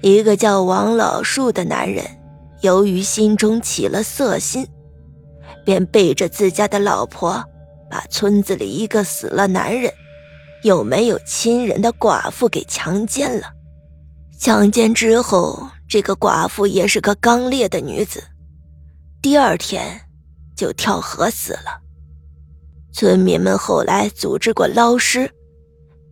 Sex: female